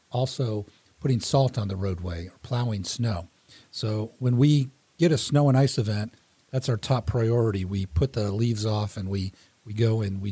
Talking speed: 190 wpm